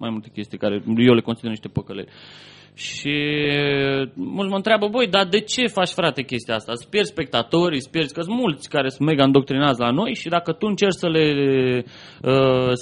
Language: Romanian